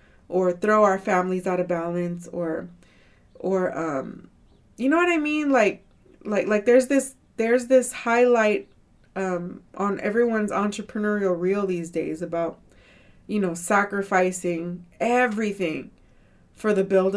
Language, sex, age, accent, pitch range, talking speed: English, female, 20-39, American, 180-215 Hz, 135 wpm